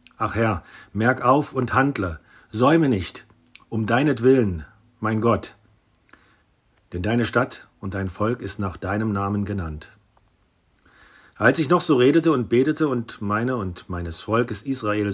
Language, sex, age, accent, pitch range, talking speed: German, male, 50-69, German, 100-130 Hz, 145 wpm